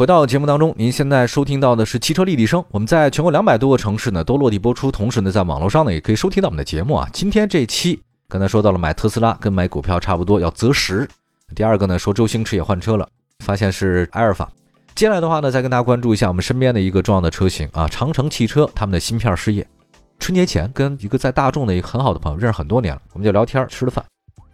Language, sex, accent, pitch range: Chinese, male, native, 95-140 Hz